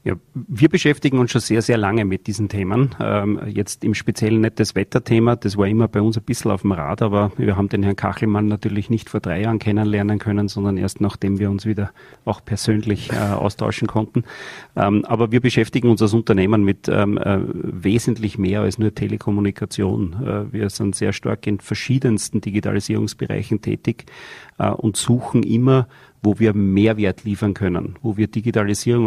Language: German